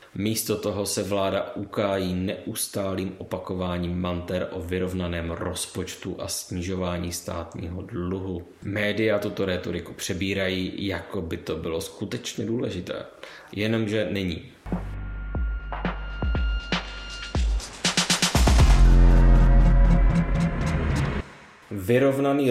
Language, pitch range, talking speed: Czech, 90-105 Hz, 75 wpm